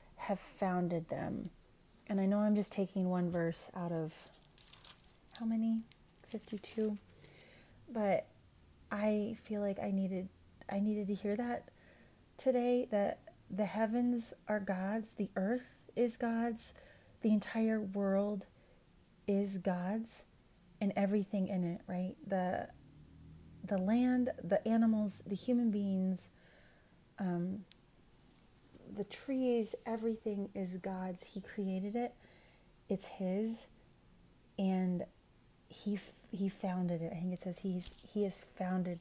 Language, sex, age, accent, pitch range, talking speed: English, female, 30-49, American, 185-215 Hz, 120 wpm